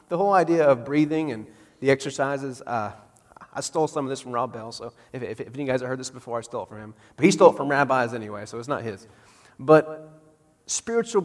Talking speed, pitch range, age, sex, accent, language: 250 wpm, 120-155 Hz, 40-59, male, American, English